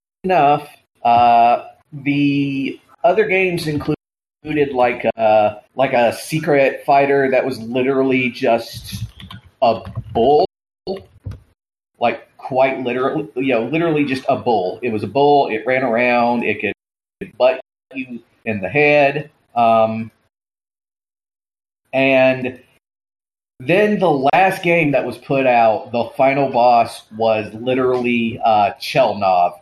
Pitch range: 115-145 Hz